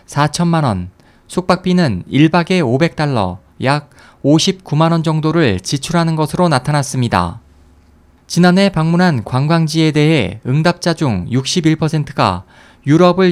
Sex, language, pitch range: male, Korean, 120-175 Hz